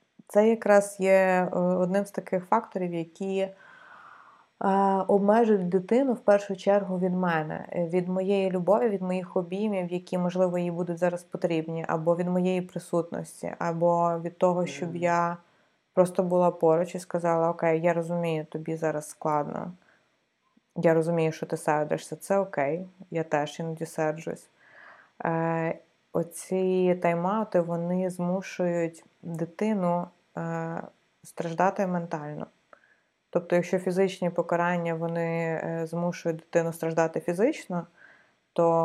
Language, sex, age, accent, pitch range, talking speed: Ukrainian, female, 20-39, native, 165-185 Hz, 120 wpm